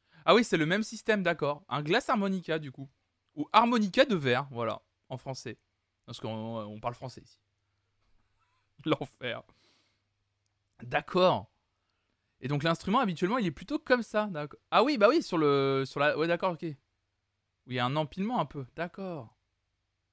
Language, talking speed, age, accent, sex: French, 165 wpm, 20-39, French, male